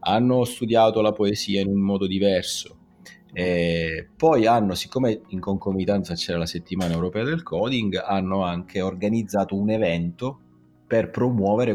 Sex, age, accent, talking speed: male, 30-49, native, 135 wpm